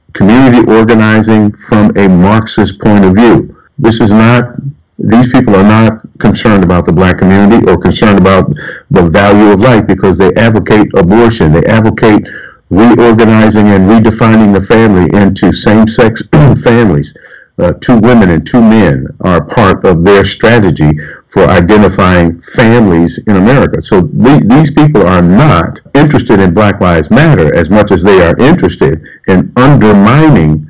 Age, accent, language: 50-69, American, English